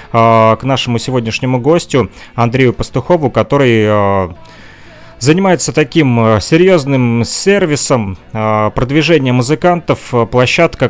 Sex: male